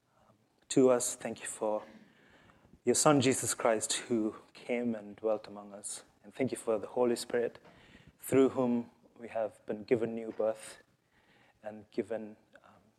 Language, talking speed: English, 150 wpm